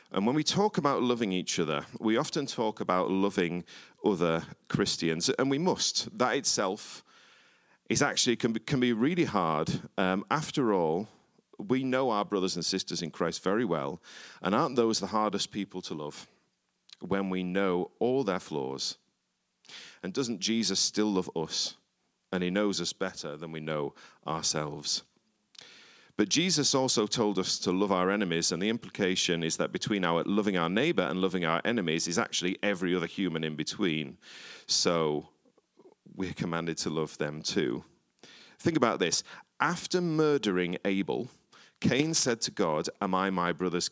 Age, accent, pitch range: 40-59, British, 85-130 Hz